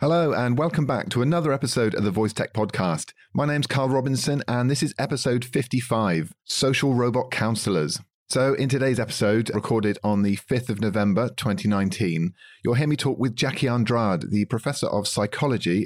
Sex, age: male, 40-59